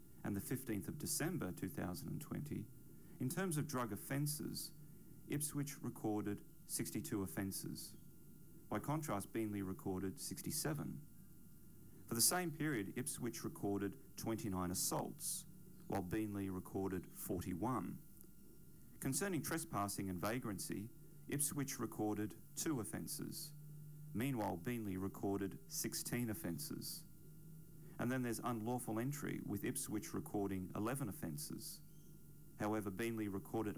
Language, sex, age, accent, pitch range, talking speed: English, male, 40-59, Australian, 100-150 Hz, 105 wpm